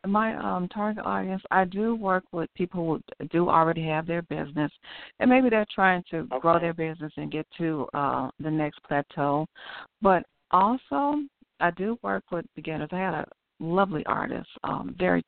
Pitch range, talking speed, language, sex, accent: 150-180 Hz, 175 wpm, English, female, American